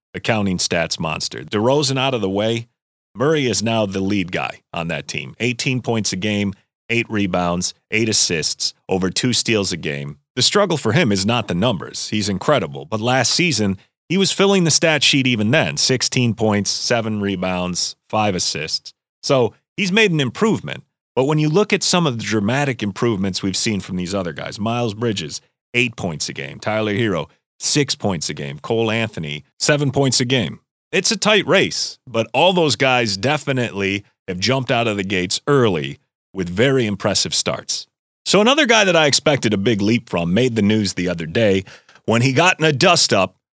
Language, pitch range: English, 100-135 Hz